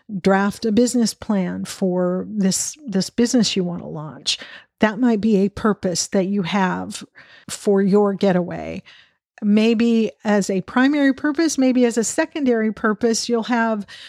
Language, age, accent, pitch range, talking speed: English, 50-69, American, 195-245 Hz, 150 wpm